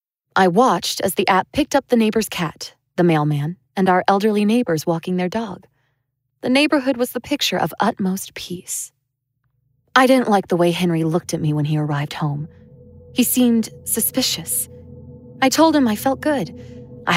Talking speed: 175 wpm